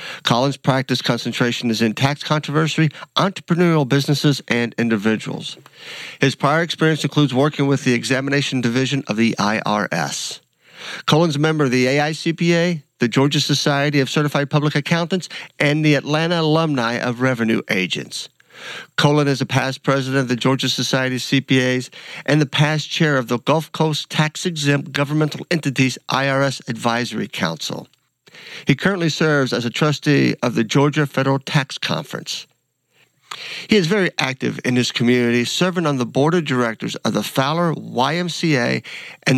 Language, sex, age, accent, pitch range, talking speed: English, male, 50-69, American, 125-155 Hz, 150 wpm